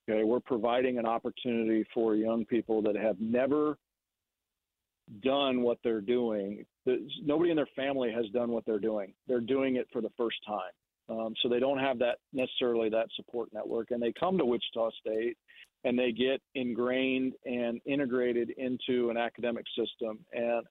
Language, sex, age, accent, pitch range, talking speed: English, male, 40-59, American, 115-130 Hz, 170 wpm